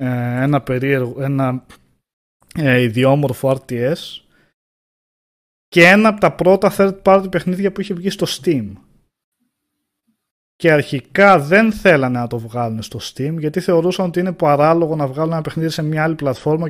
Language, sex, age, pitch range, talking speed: Greek, male, 20-39, 120-155 Hz, 145 wpm